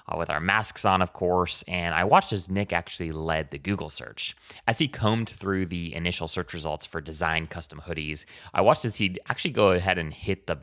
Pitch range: 85-130 Hz